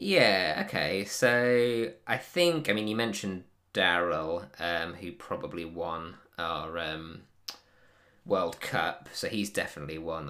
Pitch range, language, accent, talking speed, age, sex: 85-100 Hz, English, British, 130 wpm, 20-39, male